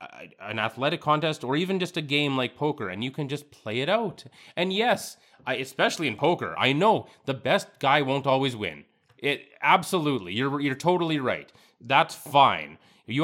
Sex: male